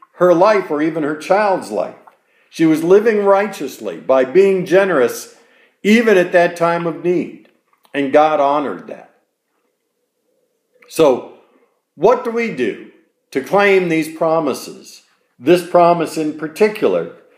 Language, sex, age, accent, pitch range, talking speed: English, male, 50-69, American, 155-205 Hz, 130 wpm